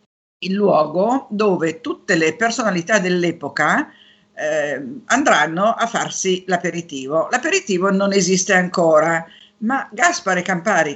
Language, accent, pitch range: Italian, native, 165-230 Hz